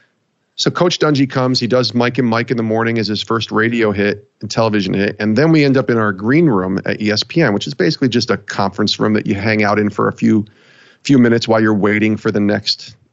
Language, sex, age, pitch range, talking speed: English, male, 40-59, 105-135 Hz, 245 wpm